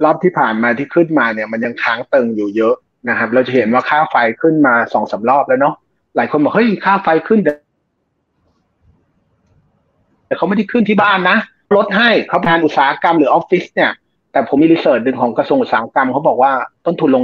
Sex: male